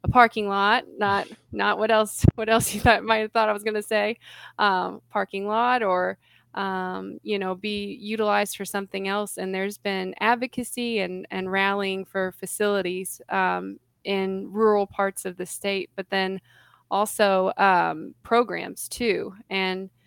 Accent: American